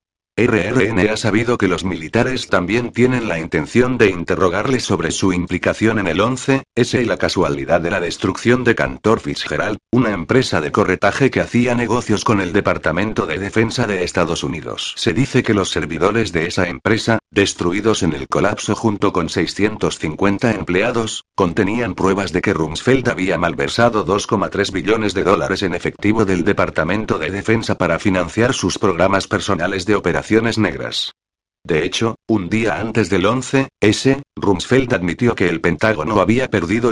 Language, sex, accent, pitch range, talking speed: Spanish, male, Spanish, 90-115 Hz, 160 wpm